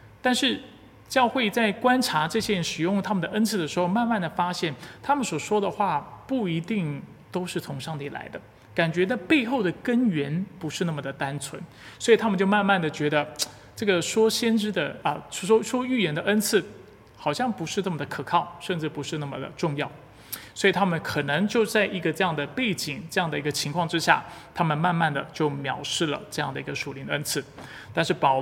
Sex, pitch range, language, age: male, 150-210 Hz, Chinese, 30-49